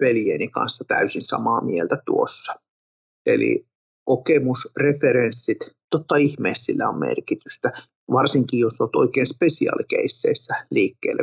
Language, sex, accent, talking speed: Finnish, male, native, 105 wpm